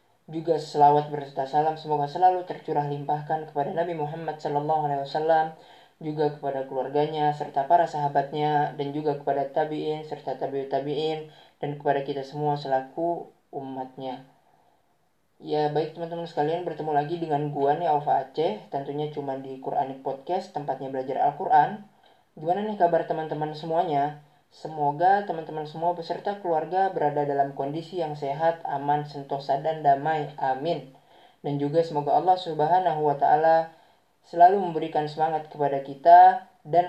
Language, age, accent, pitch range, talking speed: Indonesian, 20-39, native, 140-160 Hz, 135 wpm